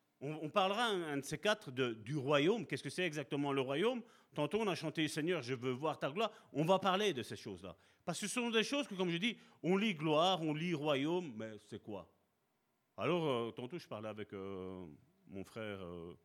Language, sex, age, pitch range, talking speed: French, male, 40-59, 120-195 Hz, 230 wpm